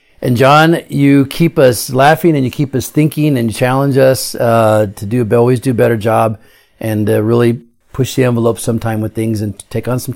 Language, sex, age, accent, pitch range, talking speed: English, male, 40-59, American, 110-130 Hz, 215 wpm